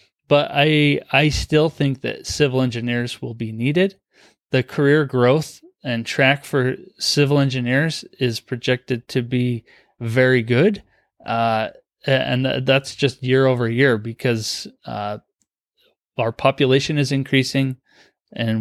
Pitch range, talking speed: 115-135 Hz, 125 wpm